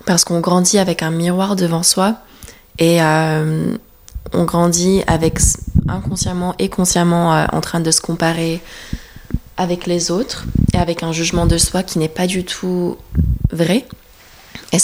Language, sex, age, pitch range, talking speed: French, female, 20-39, 165-185 Hz, 155 wpm